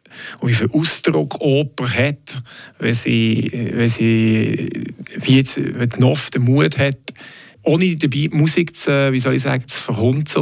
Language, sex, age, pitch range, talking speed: German, male, 40-59, 125-150 Hz, 140 wpm